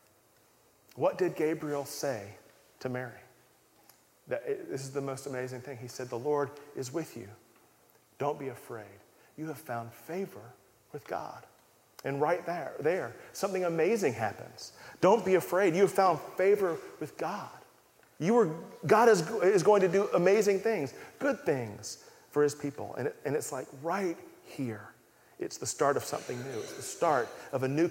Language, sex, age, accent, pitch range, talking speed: English, male, 40-59, American, 115-155 Hz, 170 wpm